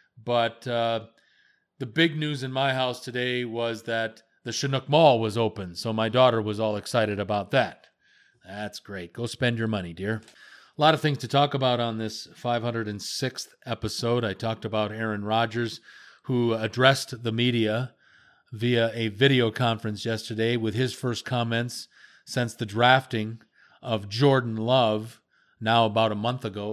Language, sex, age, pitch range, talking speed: English, male, 40-59, 110-130 Hz, 160 wpm